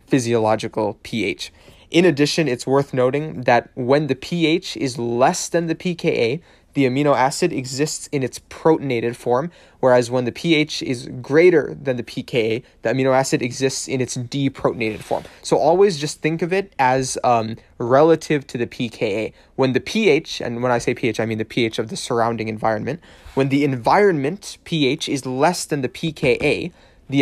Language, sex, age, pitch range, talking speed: English, male, 20-39, 120-160 Hz, 175 wpm